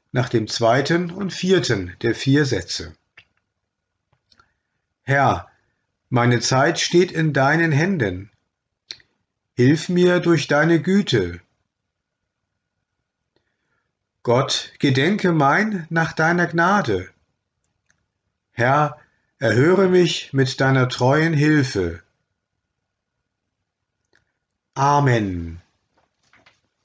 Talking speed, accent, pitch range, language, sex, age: 75 wpm, German, 115-165 Hz, German, male, 50-69